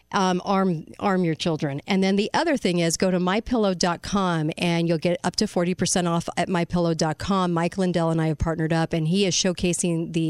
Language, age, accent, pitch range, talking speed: English, 50-69, American, 165-195 Hz, 205 wpm